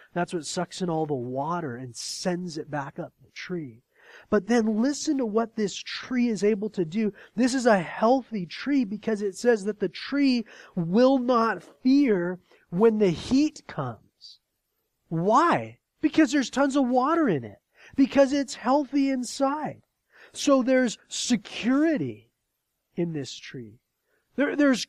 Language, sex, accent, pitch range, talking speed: English, male, American, 170-245 Hz, 150 wpm